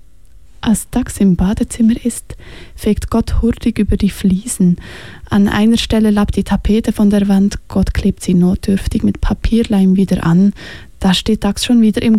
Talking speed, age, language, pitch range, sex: 165 wpm, 20-39, English, 185-220 Hz, female